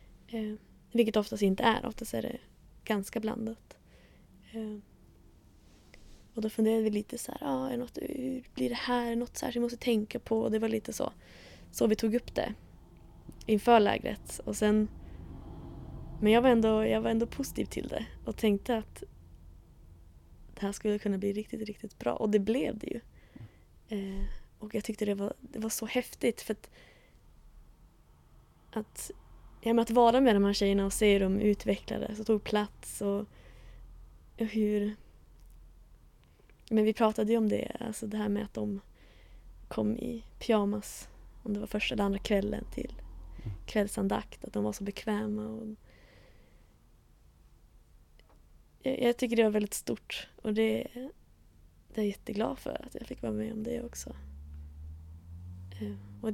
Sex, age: female, 20-39